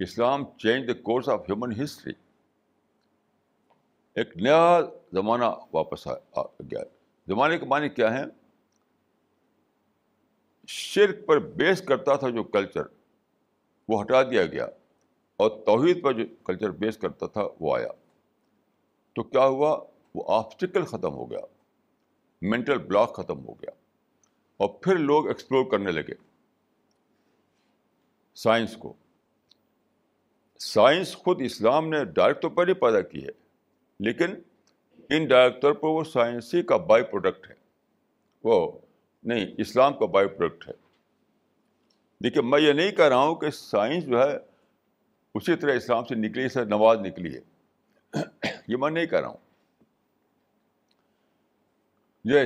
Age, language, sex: 60-79, Urdu, male